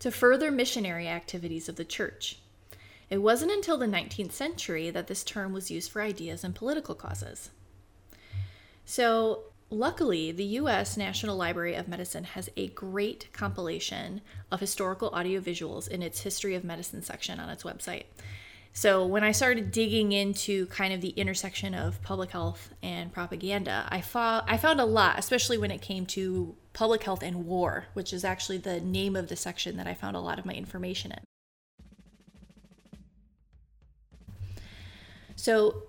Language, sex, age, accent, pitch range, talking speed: English, female, 20-39, American, 160-220 Hz, 160 wpm